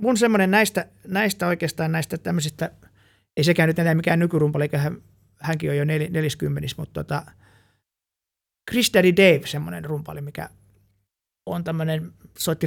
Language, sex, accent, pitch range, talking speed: Finnish, male, native, 135-175 Hz, 145 wpm